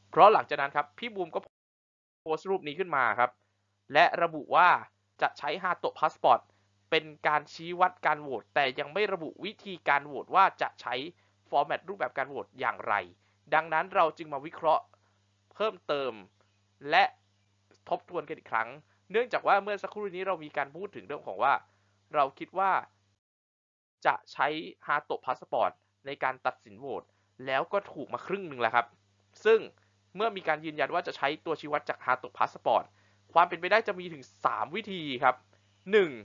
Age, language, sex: 20-39, Thai, male